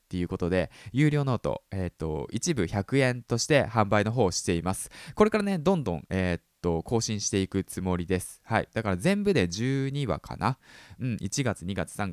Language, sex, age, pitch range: Japanese, male, 20-39, 90-130 Hz